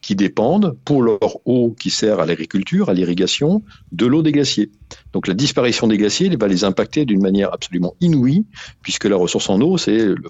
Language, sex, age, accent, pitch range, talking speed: French, male, 50-69, French, 95-130 Hz, 205 wpm